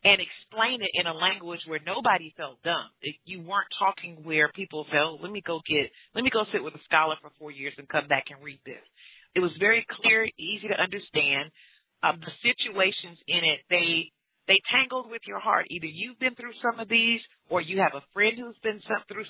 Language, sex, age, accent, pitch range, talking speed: English, female, 40-59, American, 160-205 Hz, 215 wpm